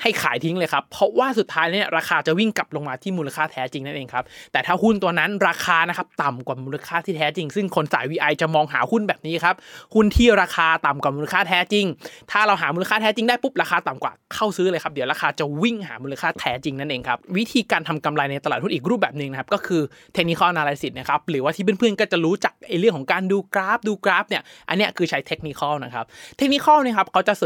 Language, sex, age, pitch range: Thai, male, 20-39, 155-210 Hz